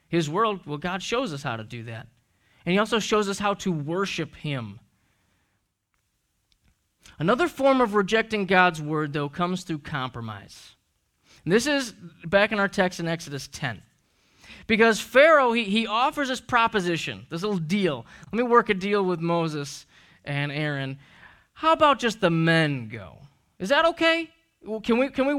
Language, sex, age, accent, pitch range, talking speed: English, male, 20-39, American, 145-210 Hz, 170 wpm